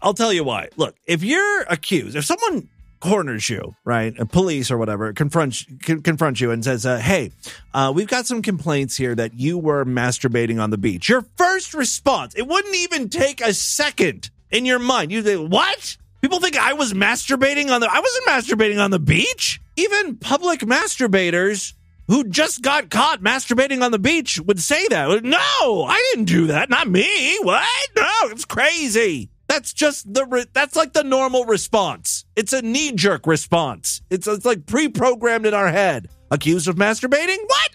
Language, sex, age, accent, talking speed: English, male, 30-49, American, 185 wpm